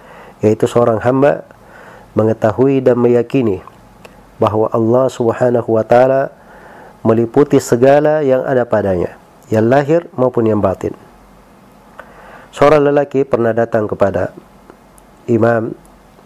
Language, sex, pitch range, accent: Indonesian, male, 110-125 Hz, native